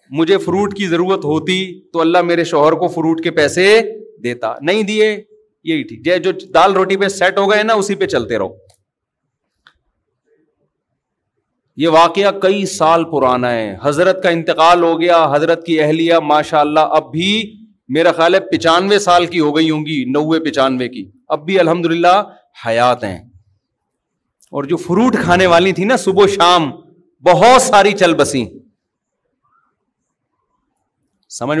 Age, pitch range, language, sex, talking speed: 40-59, 155-195 Hz, Urdu, male, 150 wpm